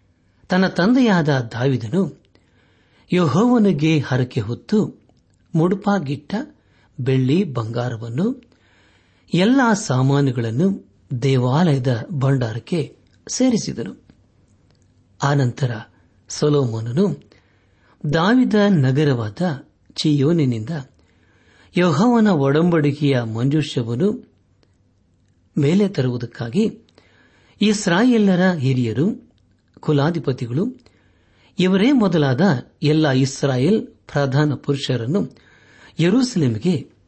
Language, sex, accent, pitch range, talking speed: Kannada, male, native, 105-175 Hz, 55 wpm